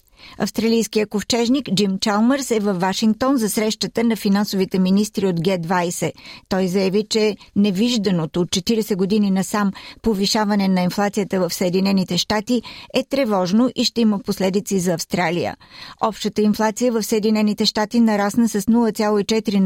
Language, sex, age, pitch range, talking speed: Bulgarian, female, 50-69, 195-225 Hz, 135 wpm